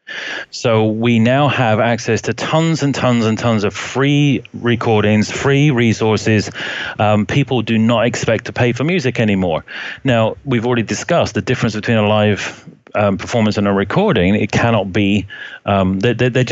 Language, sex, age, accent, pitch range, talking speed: English, male, 30-49, British, 105-125 Hz, 165 wpm